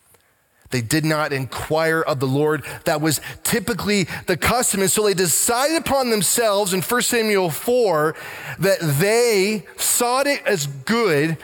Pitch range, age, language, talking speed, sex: 150-225 Hz, 30-49, English, 145 wpm, male